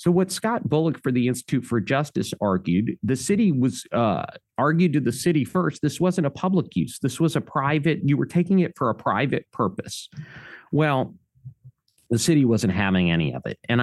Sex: male